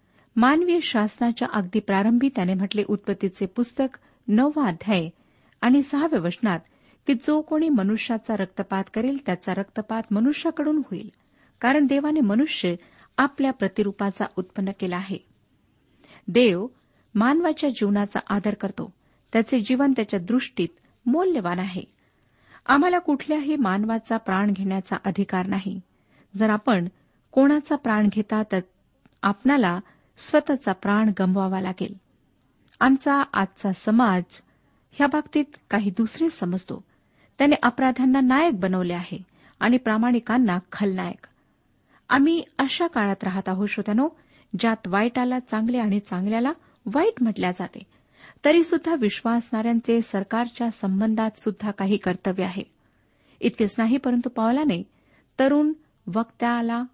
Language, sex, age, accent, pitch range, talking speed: Marathi, female, 40-59, native, 195-260 Hz, 110 wpm